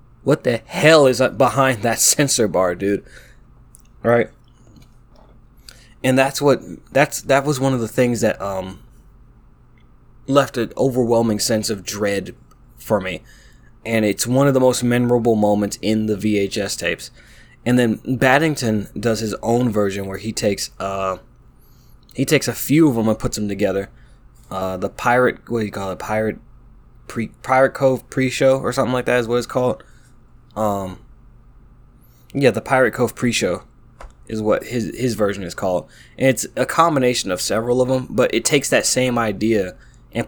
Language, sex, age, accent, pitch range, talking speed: English, male, 20-39, American, 110-125 Hz, 170 wpm